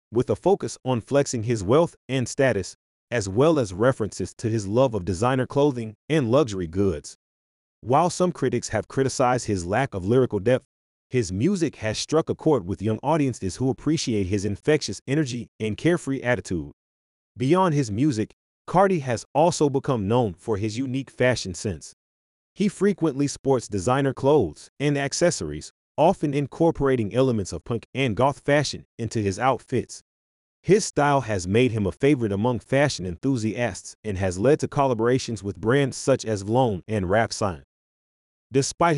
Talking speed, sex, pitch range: 160 wpm, male, 100-140 Hz